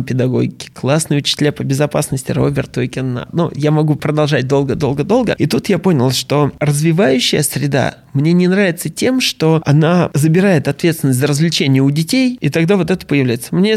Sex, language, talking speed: male, Russian, 165 wpm